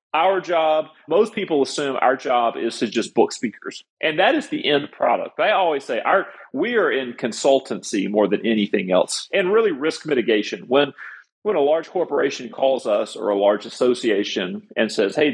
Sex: male